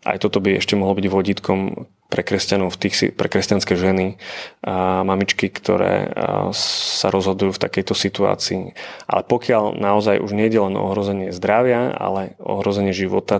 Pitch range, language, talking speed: 95-105 Hz, Slovak, 145 wpm